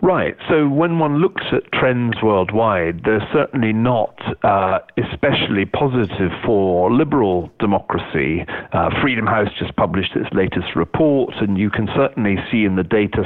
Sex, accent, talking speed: male, British, 150 wpm